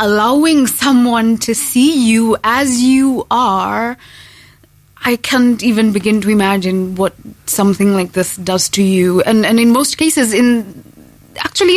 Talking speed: 145 wpm